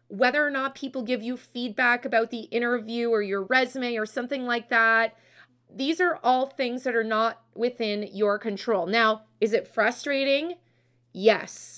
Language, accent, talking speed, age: English, American, 165 wpm, 30-49